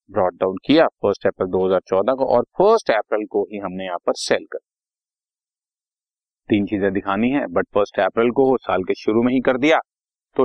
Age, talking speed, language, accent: 40-59, 145 wpm, Hindi, native